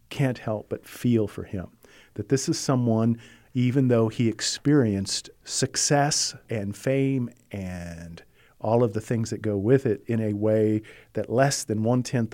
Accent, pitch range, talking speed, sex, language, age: American, 105-130 Hz, 160 wpm, male, English, 50-69